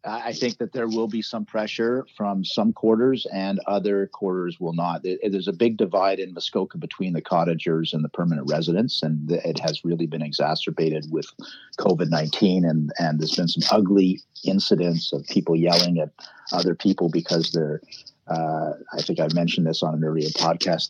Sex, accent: male, American